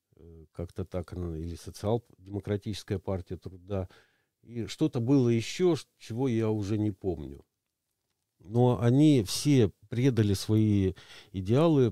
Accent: native